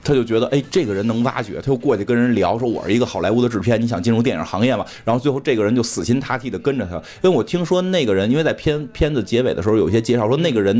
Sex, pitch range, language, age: male, 105-130 Hz, Chinese, 20-39